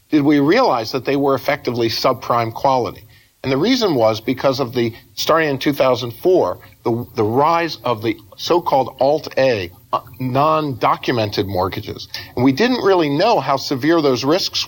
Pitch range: 115-140 Hz